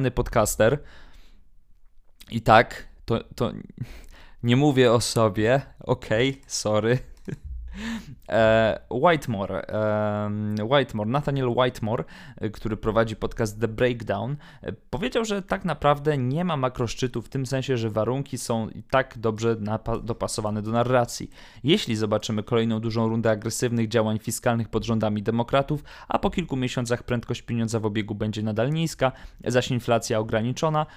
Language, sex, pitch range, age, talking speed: Polish, male, 110-135 Hz, 20-39, 125 wpm